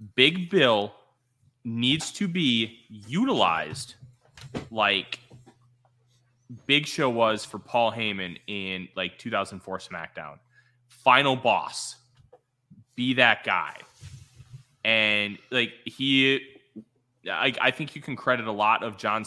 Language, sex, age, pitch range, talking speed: English, male, 20-39, 105-130 Hz, 110 wpm